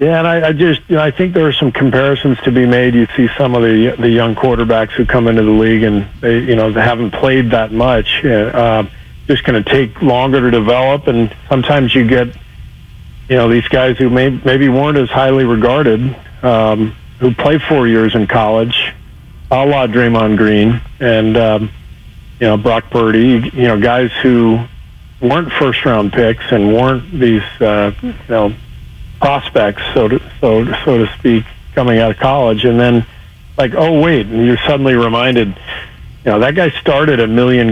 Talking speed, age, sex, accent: 190 wpm, 40-59, male, American